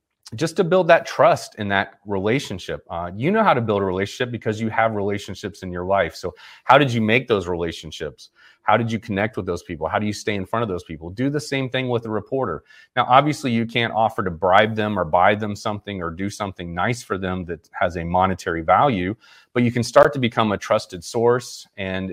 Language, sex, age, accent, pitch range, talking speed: English, male, 30-49, American, 95-120 Hz, 235 wpm